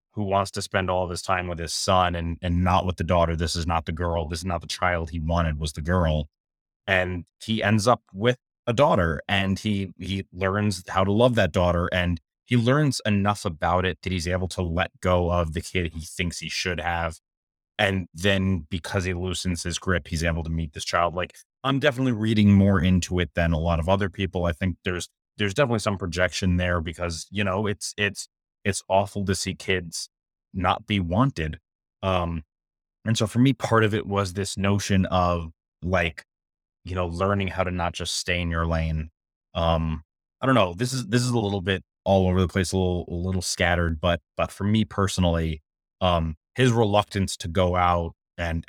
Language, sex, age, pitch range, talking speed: English, male, 30-49, 85-100 Hz, 210 wpm